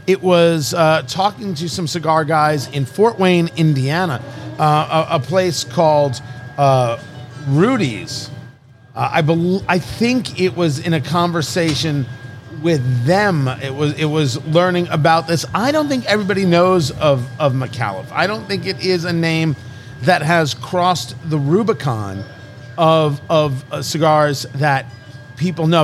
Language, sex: English, male